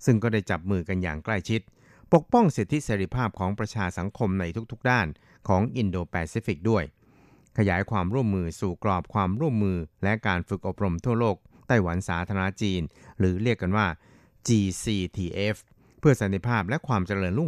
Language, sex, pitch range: Thai, male, 95-115 Hz